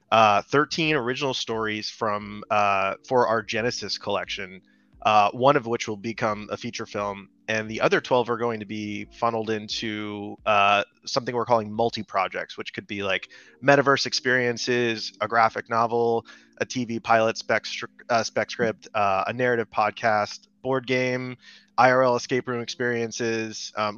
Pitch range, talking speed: 105-125 Hz, 155 wpm